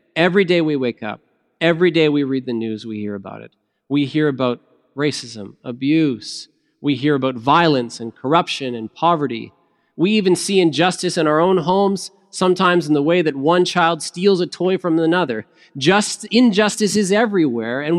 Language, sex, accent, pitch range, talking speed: English, male, American, 145-185 Hz, 175 wpm